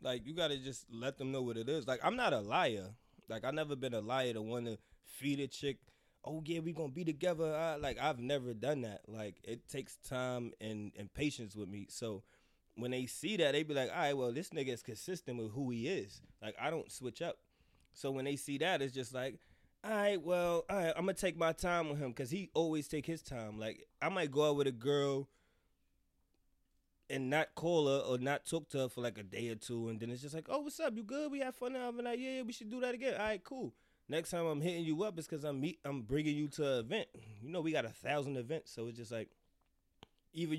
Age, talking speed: 20-39, 255 wpm